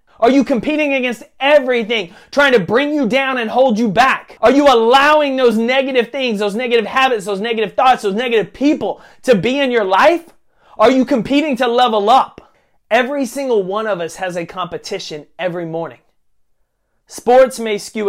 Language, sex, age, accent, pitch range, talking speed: English, male, 30-49, American, 185-250 Hz, 175 wpm